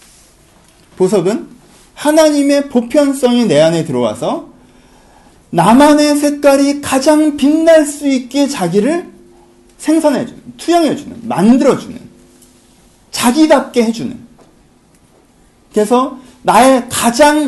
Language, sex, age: Korean, male, 40-59